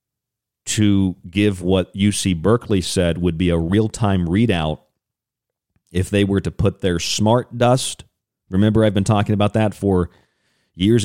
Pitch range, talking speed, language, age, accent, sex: 85-110 Hz, 145 wpm, English, 40-59, American, male